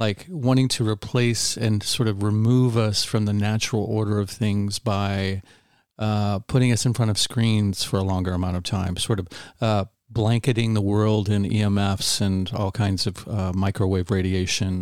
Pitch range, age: 100-115 Hz, 40-59